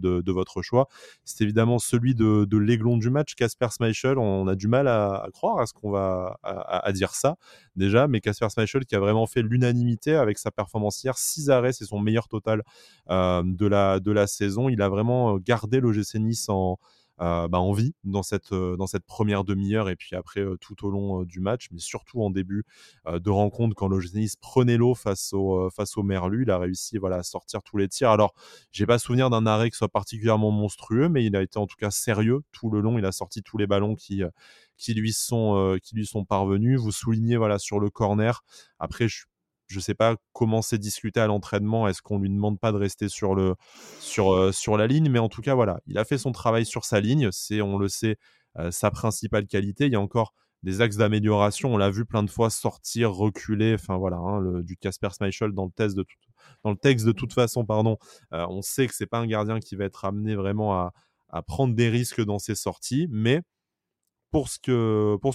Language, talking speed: French, 235 wpm